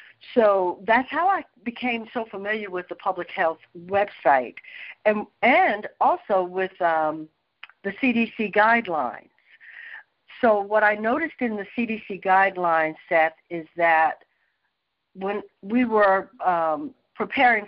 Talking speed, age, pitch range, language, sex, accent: 120 wpm, 60-79, 180-240 Hz, English, female, American